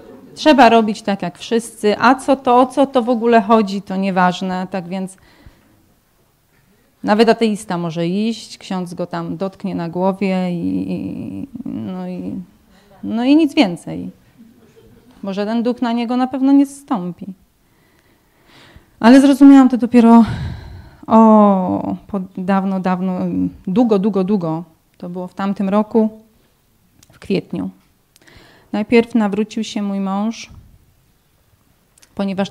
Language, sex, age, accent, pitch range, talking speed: Polish, female, 30-49, native, 190-240 Hz, 125 wpm